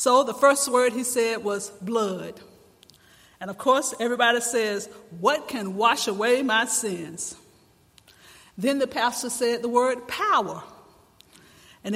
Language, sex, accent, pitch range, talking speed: English, female, American, 215-275 Hz, 135 wpm